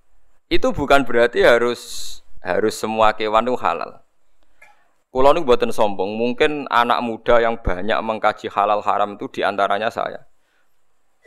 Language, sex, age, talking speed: Indonesian, male, 20-39, 120 wpm